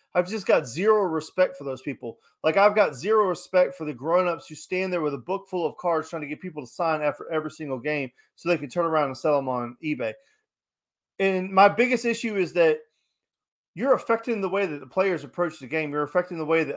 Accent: American